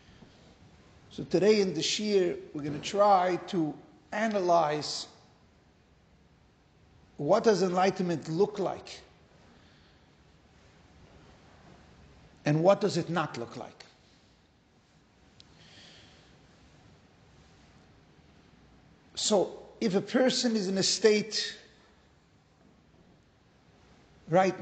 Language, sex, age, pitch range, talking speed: English, male, 50-69, 160-205 Hz, 80 wpm